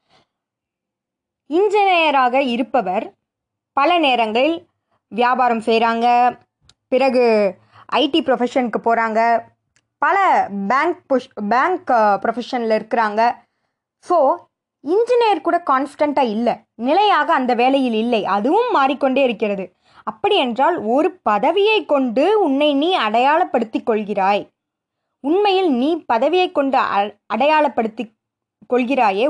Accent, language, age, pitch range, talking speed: native, Tamil, 20-39, 215-295 Hz, 90 wpm